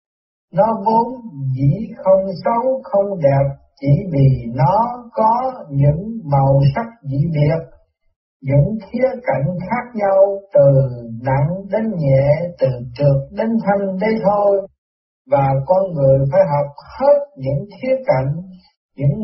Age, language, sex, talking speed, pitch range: 60-79, Vietnamese, male, 130 wpm, 140-220 Hz